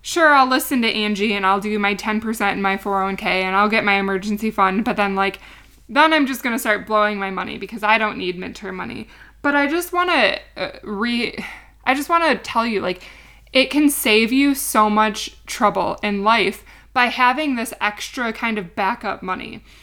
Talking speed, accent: 210 wpm, American